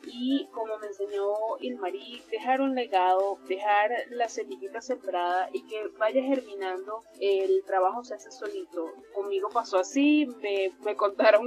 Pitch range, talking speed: 200-275 Hz, 140 wpm